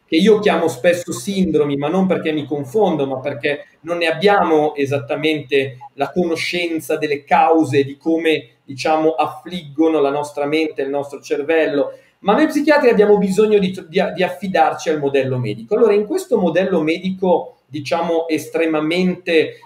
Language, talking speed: Italian, 145 wpm